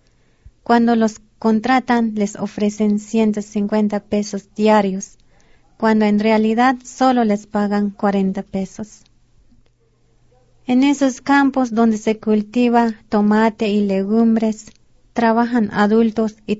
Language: Spanish